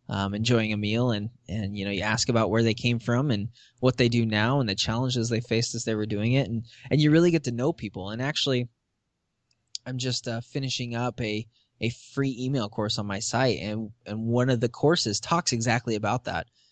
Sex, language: male, English